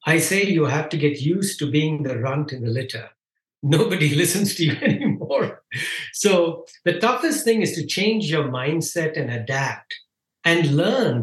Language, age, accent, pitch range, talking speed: English, 60-79, Indian, 145-185 Hz, 170 wpm